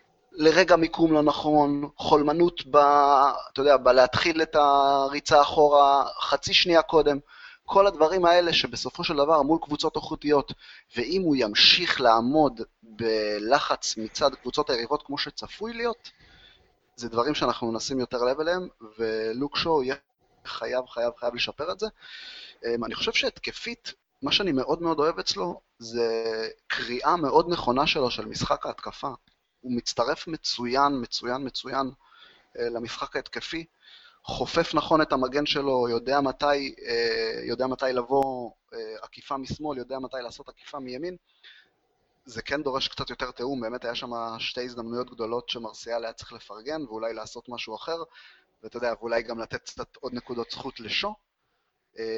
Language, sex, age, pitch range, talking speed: Hebrew, male, 30-49, 120-160 Hz, 140 wpm